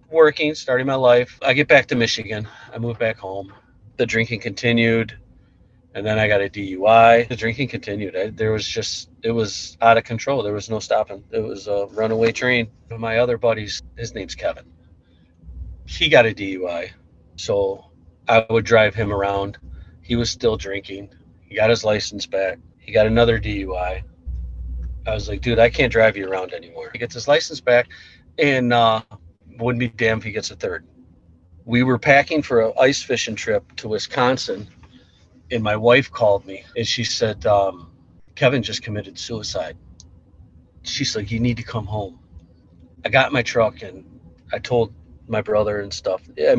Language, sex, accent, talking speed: English, male, American, 180 wpm